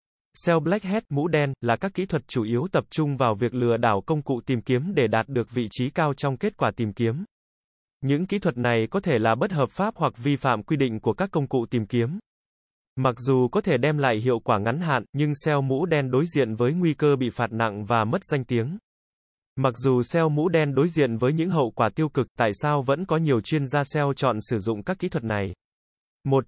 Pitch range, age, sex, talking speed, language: 120-160 Hz, 20-39, male, 245 wpm, Vietnamese